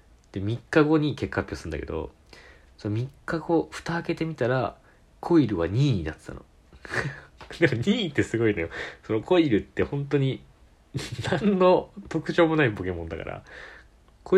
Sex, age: male, 40-59